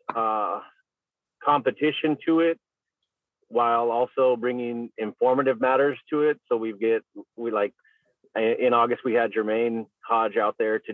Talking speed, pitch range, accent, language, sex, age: 135 wpm, 115-140 Hz, American, English, male, 40-59